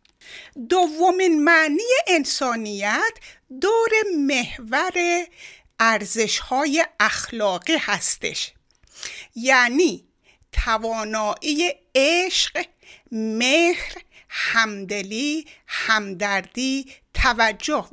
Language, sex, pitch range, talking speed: Persian, female, 215-330 Hz, 50 wpm